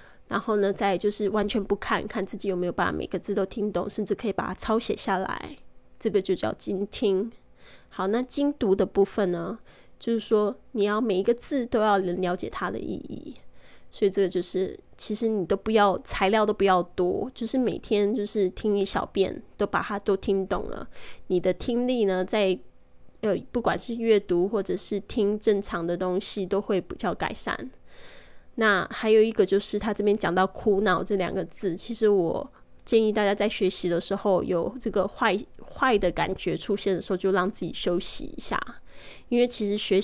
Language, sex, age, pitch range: Chinese, female, 10-29, 185-215 Hz